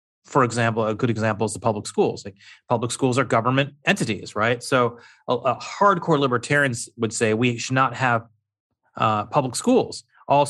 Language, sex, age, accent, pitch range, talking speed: English, male, 30-49, American, 110-140 Hz, 175 wpm